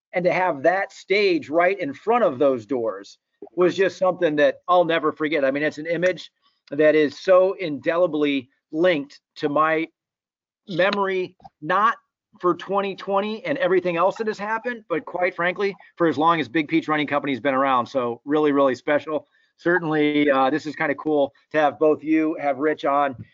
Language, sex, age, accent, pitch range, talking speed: English, male, 30-49, American, 150-190 Hz, 185 wpm